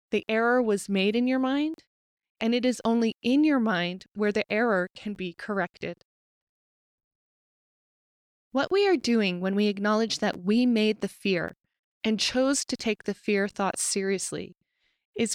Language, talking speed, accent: English, 160 wpm, American